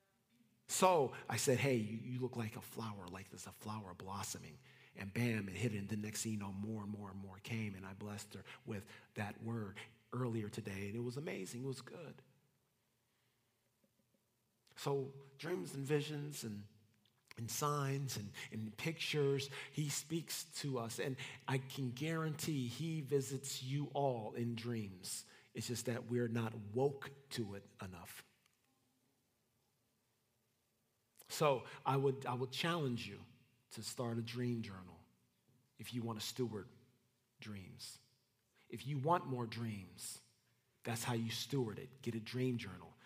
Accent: American